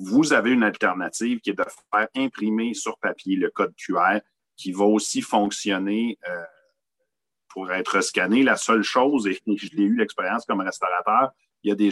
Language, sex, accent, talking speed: French, male, Canadian, 180 wpm